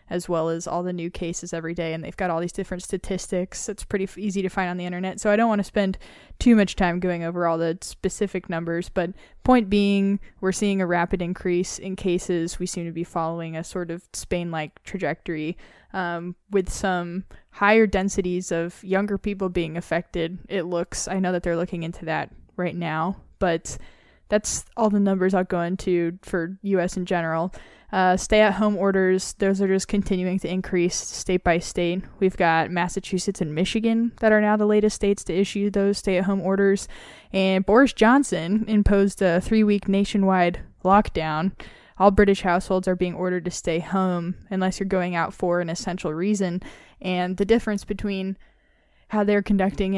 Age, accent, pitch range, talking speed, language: 10-29, American, 175-200 Hz, 180 wpm, English